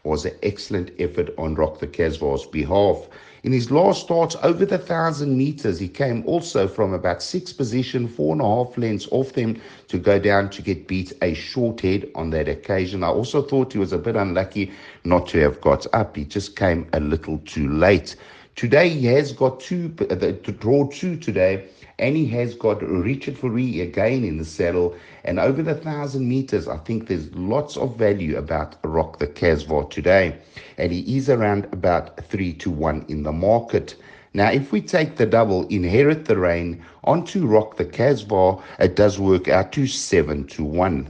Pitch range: 85-130 Hz